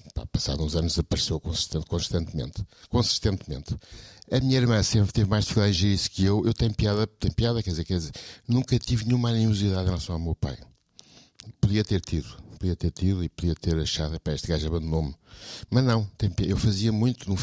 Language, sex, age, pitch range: Portuguese, male, 60-79, 80-110 Hz